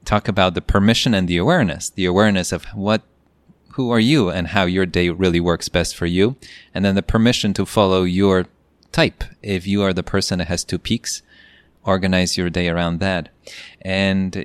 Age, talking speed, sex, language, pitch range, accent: 30-49, 190 wpm, male, English, 90-105 Hz, Canadian